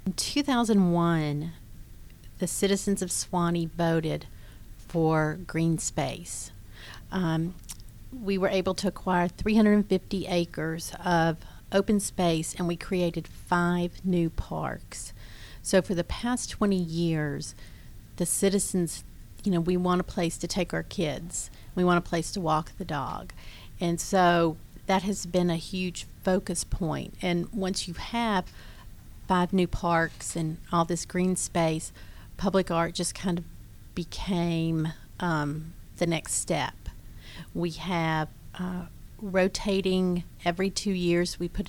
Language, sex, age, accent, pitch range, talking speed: English, female, 40-59, American, 160-185 Hz, 135 wpm